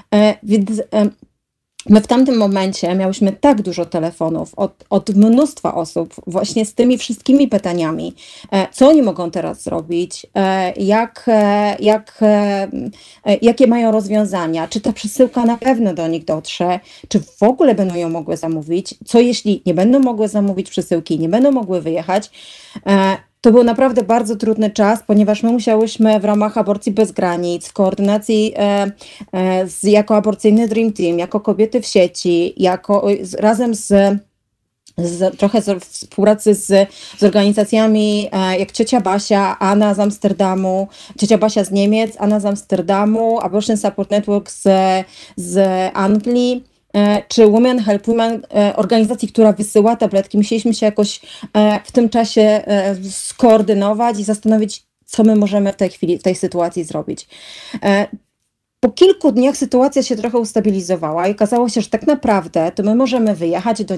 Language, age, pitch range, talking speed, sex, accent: Polish, 30-49, 190-225 Hz, 145 wpm, female, native